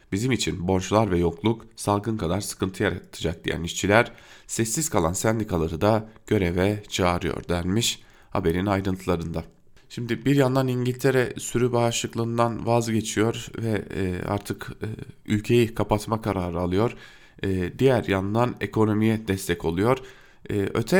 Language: German